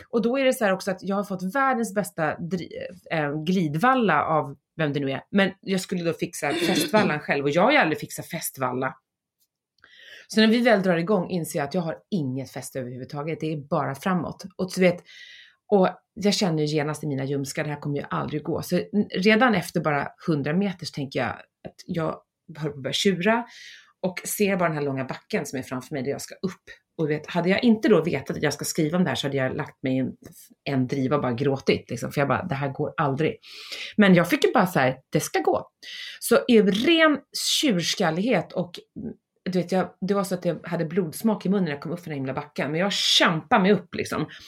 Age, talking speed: 30-49, 225 wpm